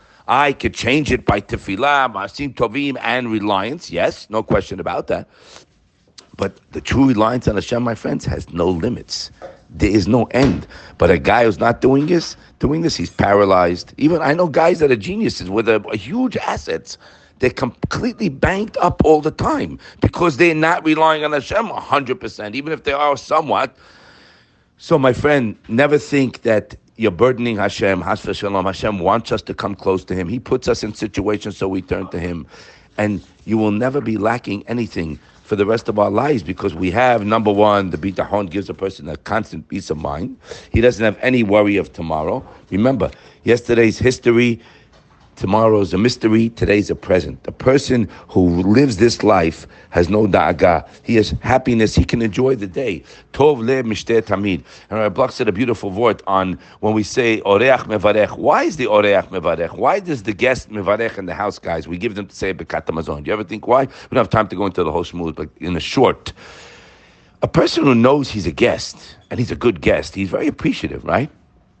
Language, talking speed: English, 195 wpm